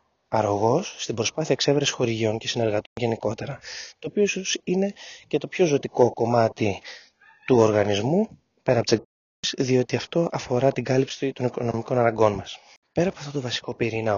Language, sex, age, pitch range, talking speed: Greek, male, 20-39, 110-140 Hz, 160 wpm